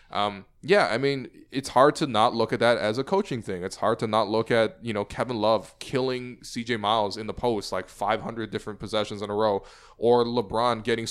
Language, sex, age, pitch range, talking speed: English, male, 10-29, 110-125 Hz, 220 wpm